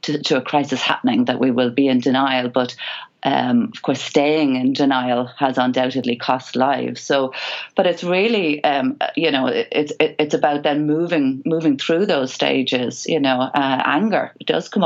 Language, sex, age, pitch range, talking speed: English, female, 40-59, 135-160 Hz, 180 wpm